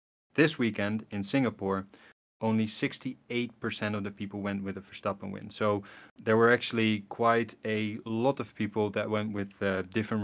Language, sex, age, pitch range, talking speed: English, male, 20-39, 100-115 Hz, 165 wpm